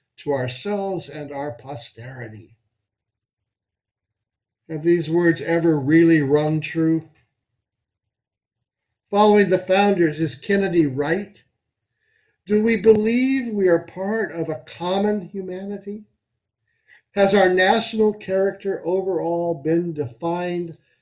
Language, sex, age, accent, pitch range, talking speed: English, male, 60-79, American, 145-200 Hz, 100 wpm